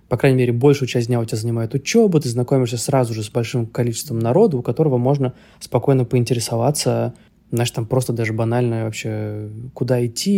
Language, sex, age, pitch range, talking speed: Russian, male, 20-39, 125-150 Hz, 180 wpm